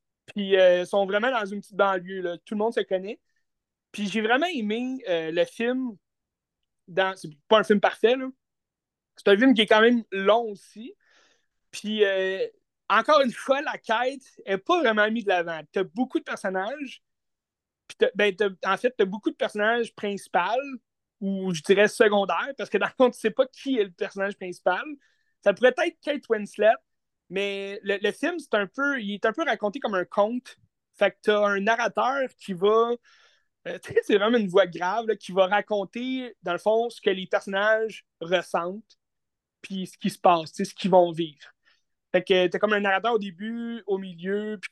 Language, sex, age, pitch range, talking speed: French, male, 30-49, 190-235 Hz, 205 wpm